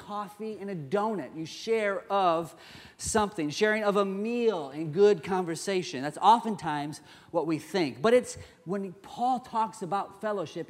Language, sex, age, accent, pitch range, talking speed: English, male, 30-49, American, 150-200 Hz, 150 wpm